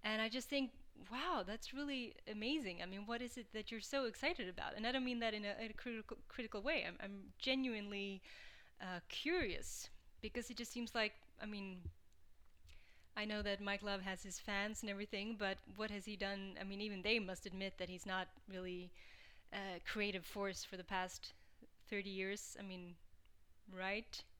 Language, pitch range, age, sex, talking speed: English, 195-240 Hz, 20-39, female, 190 wpm